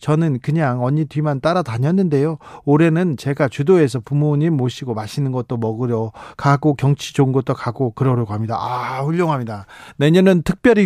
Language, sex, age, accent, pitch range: Korean, male, 40-59, native, 125-165 Hz